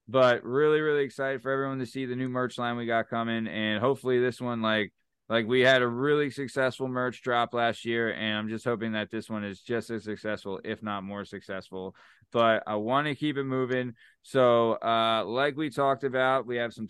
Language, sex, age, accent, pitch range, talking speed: English, male, 20-39, American, 110-130 Hz, 215 wpm